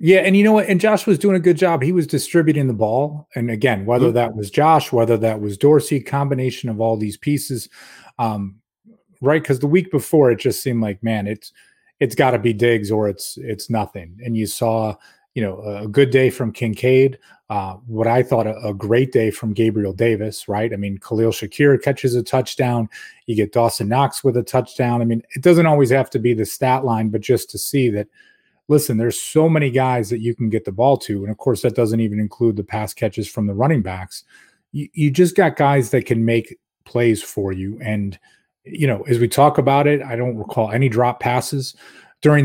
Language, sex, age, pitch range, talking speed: English, male, 30-49, 110-140 Hz, 220 wpm